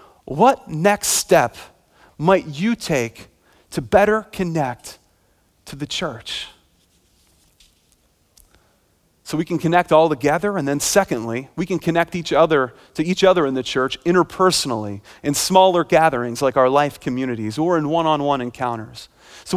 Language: English